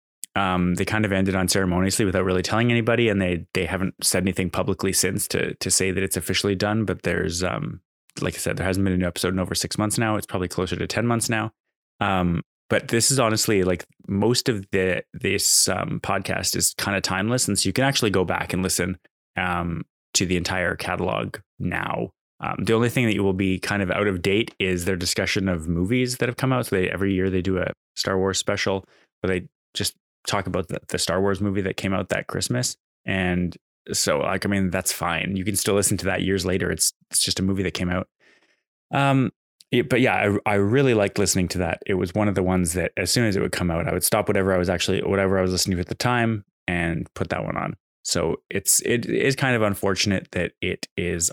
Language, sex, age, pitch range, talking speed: English, male, 20-39, 90-105 Hz, 240 wpm